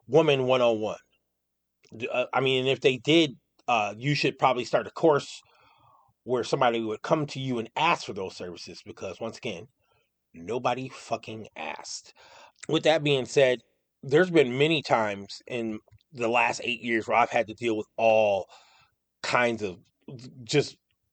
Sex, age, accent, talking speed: male, 30-49, American, 155 wpm